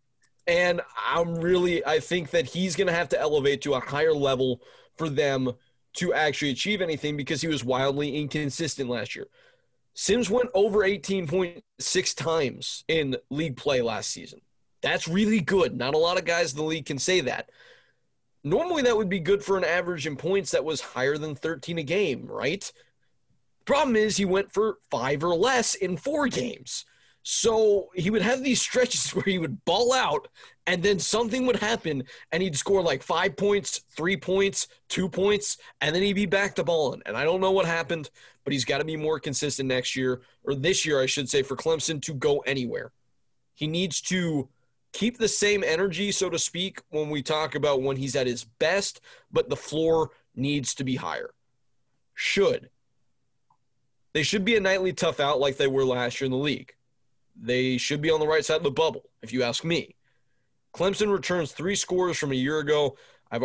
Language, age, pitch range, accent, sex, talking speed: English, 30-49, 140-195 Hz, American, male, 195 wpm